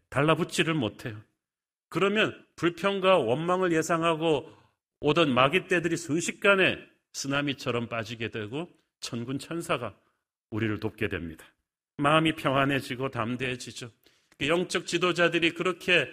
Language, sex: Korean, male